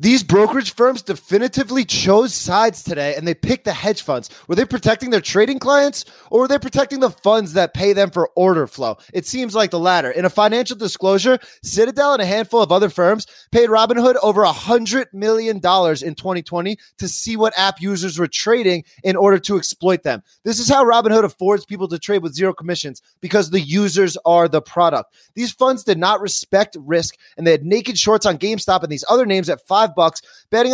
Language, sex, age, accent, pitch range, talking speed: English, male, 20-39, American, 175-220 Hz, 205 wpm